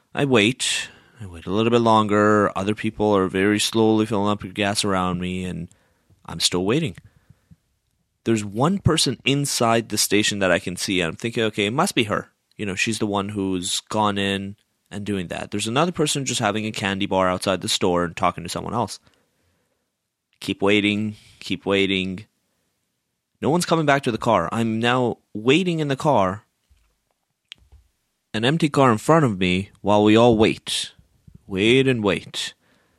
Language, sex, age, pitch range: English, male, 30-49, 105-175 Hz